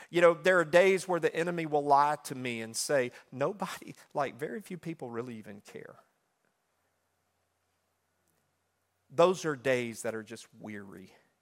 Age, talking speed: 40-59, 150 wpm